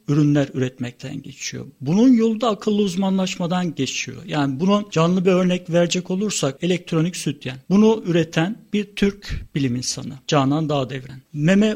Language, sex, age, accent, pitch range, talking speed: Turkish, male, 50-69, native, 140-185 Hz, 145 wpm